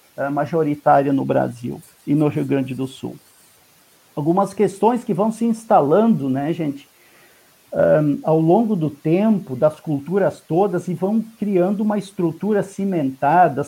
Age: 50-69